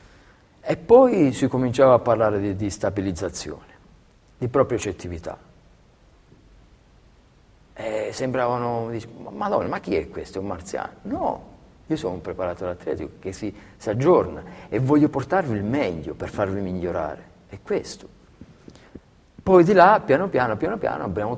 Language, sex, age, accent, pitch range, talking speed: Italian, male, 50-69, native, 95-130 Hz, 140 wpm